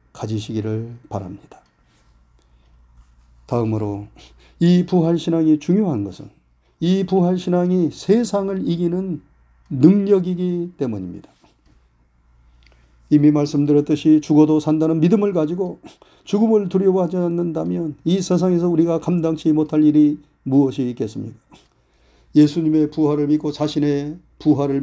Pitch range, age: 120-165 Hz, 40-59